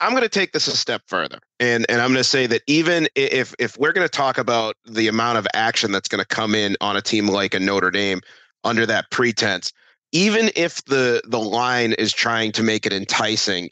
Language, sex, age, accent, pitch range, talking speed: English, male, 30-49, American, 105-130 Hz, 230 wpm